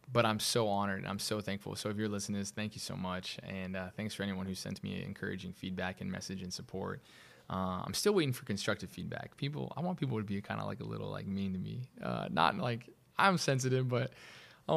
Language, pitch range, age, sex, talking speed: English, 100-130 Hz, 20-39, male, 250 wpm